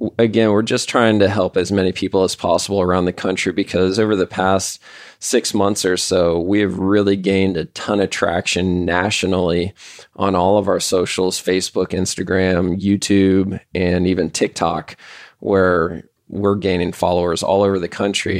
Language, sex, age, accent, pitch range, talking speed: English, male, 20-39, American, 95-105 Hz, 165 wpm